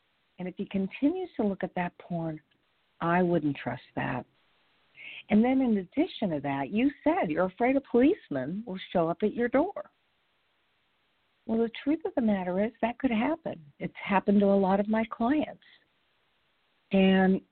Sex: female